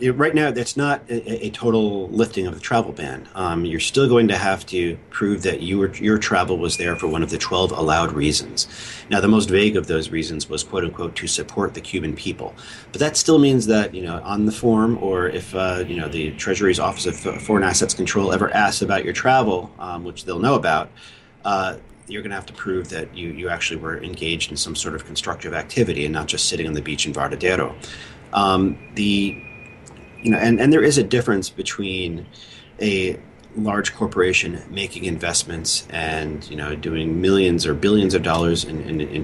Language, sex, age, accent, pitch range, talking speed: English, male, 40-59, American, 80-105 Hz, 205 wpm